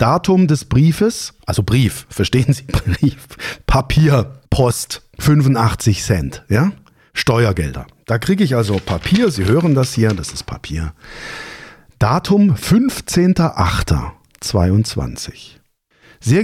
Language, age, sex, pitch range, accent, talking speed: German, 50-69, male, 100-150 Hz, German, 105 wpm